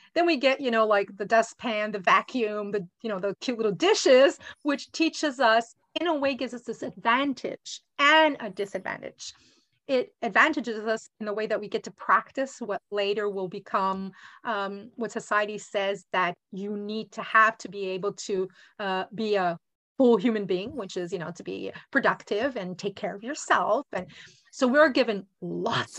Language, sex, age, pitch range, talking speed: English, female, 30-49, 205-265 Hz, 185 wpm